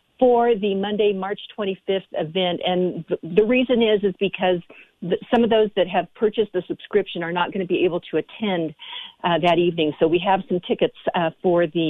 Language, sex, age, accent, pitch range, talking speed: English, female, 50-69, American, 180-220 Hz, 205 wpm